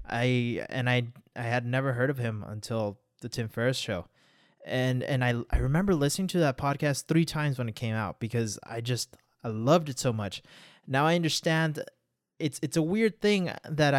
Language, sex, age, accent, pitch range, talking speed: English, male, 20-39, American, 120-155 Hz, 195 wpm